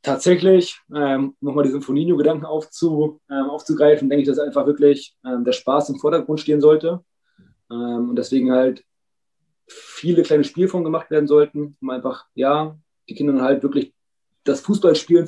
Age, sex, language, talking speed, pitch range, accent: 30-49, male, German, 155 wpm, 145-175 Hz, German